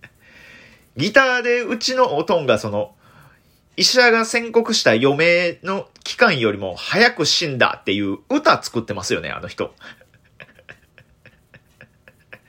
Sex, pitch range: male, 110-180 Hz